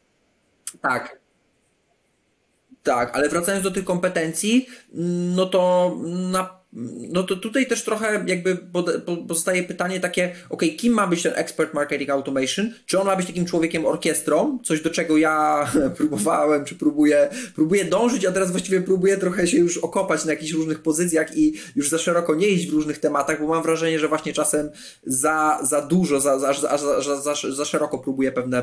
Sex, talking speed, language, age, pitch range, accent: male, 175 wpm, Polish, 20-39, 150-190 Hz, native